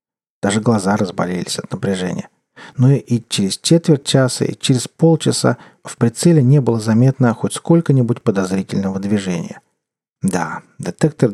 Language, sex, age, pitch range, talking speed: Russian, male, 40-59, 110-150 Hz, 125 wpm